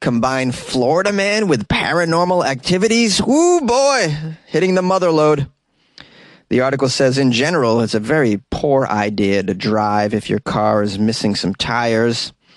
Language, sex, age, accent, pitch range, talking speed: English, male, 30-49, American, 115-155 Hz, 150 wpm